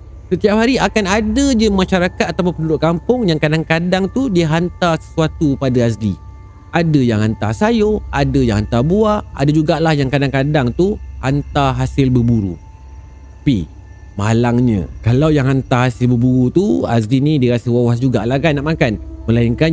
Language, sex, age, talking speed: Malay, male, 30-49, 160 wpm